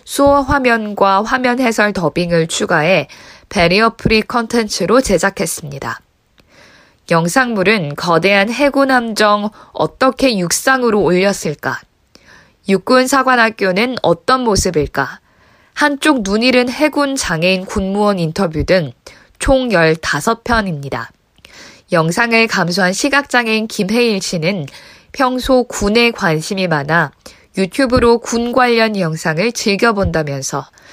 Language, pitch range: Korean, 170-240 Hz